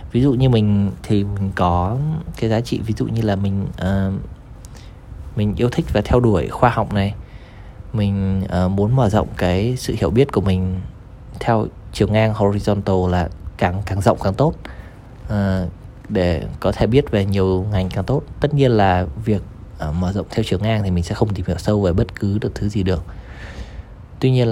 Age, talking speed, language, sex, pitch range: 20-39, 200 wpm, Vietnamese, male, 95-120 Hz